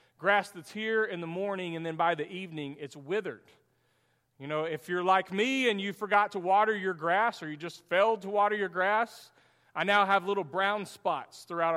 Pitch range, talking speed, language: 150-205 Hz, 210 wpm, English